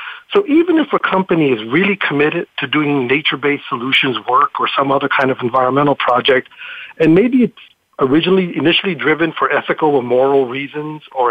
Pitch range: 135-195 Hz